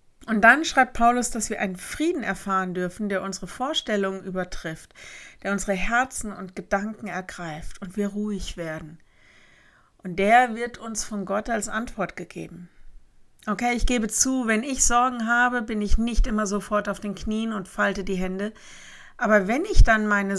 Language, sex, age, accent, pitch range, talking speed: German, female, 50-69, German, 185-215 Hz, 170 wpm